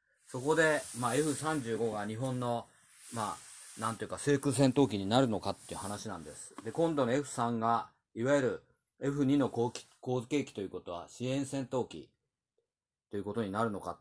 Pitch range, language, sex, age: 100-145 Hz, Japanese, male, 40-59